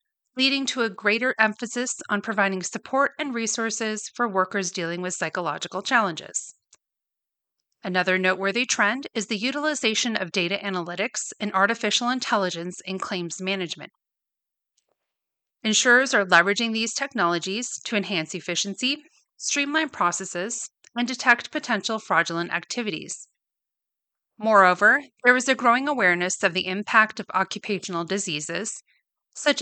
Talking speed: 120 wpm